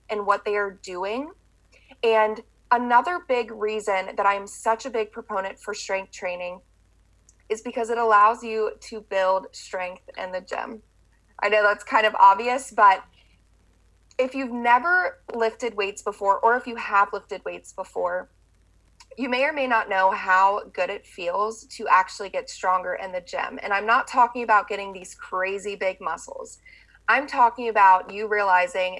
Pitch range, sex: 195-235 Hz, female